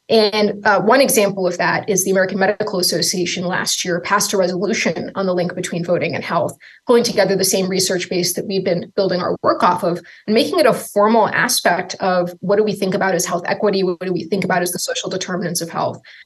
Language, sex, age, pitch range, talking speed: English, female, 20-39, 185-225 Hz, 235 wpm